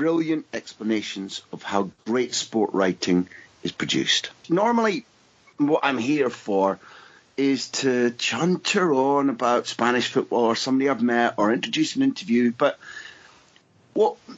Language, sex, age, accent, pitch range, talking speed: English, male, 40-59, British, 115-165 Hz, 130 wpm